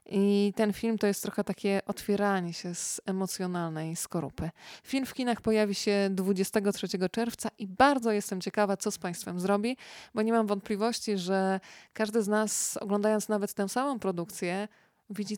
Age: 20-39